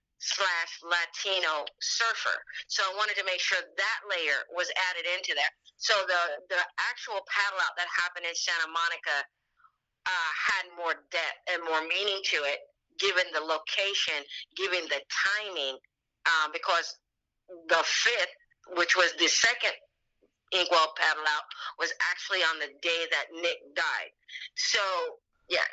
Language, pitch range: English, 165-195 Hz